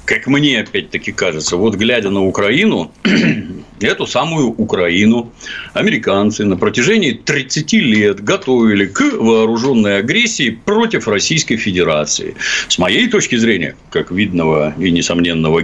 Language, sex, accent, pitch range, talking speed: Russian, male, native, 100-160 Hz, 120 wpm